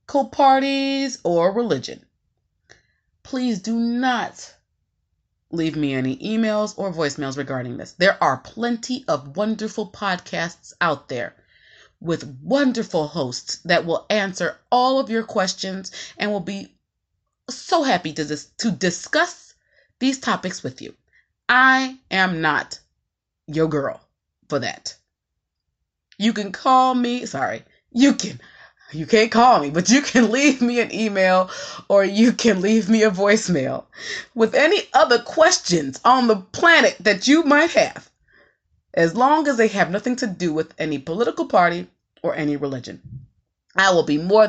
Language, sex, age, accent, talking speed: English, female, 30-49, American, 145 wpm